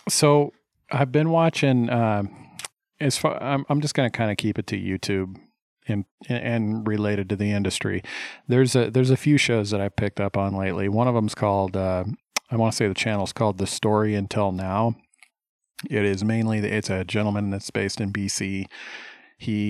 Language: English